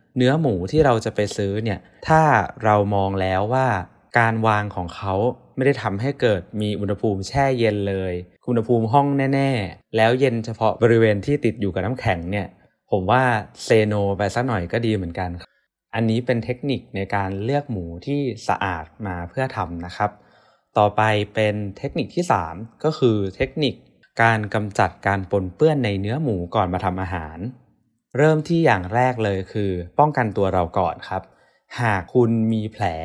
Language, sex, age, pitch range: Thai, male, 20-39, 100-125 Hz